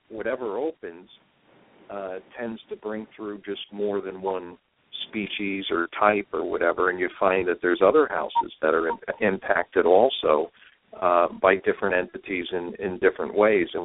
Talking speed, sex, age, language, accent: 155 wpm, male, 50-69, English, American